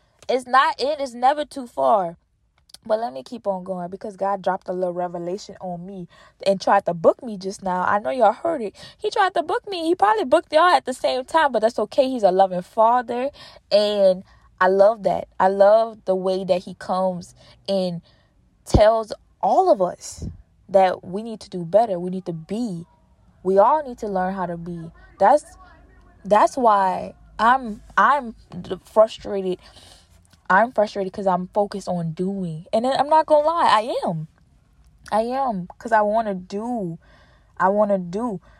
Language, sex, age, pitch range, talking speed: English, female, 20-39, 185-240 Hz, 185 wpm